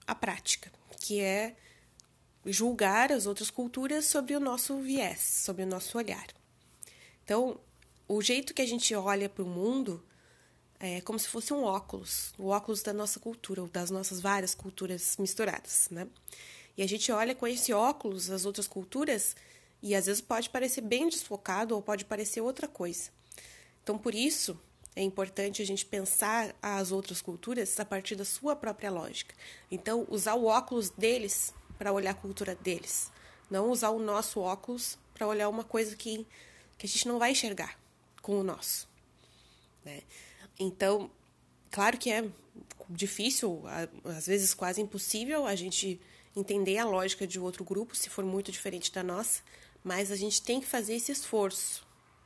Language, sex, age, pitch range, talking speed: Portuguese, female, 20-39, 195-230 Hz, 165 wpm